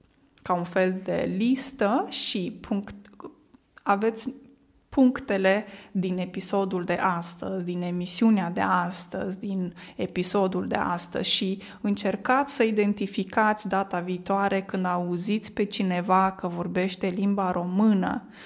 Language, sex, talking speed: Romanian, female, 115 wpm